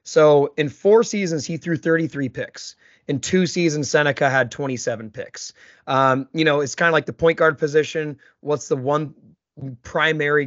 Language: English